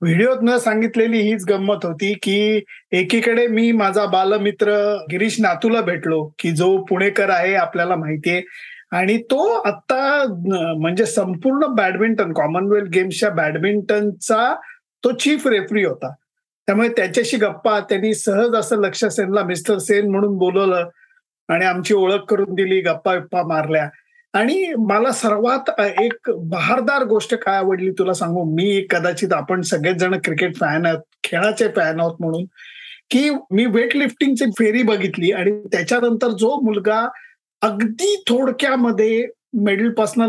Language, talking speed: Marathi, 130 wpm